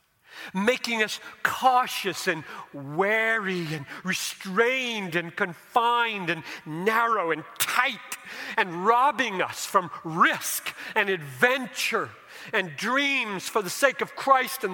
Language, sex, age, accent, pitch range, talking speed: English, male, 50-69, American, 155-245 Hz, 115 wpm